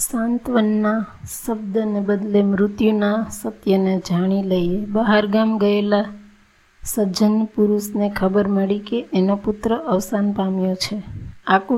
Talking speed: 105 wpm